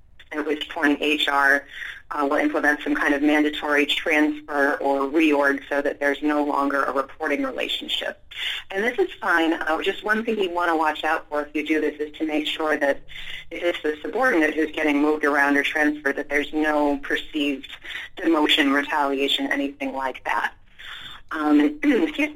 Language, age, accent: English, 30-49, American